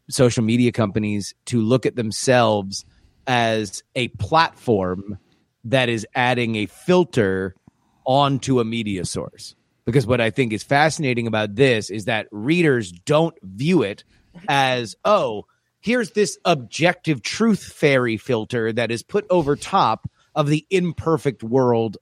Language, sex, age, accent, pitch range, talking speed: English, male, 30-49, American, 110-150 Hz, 135 wpm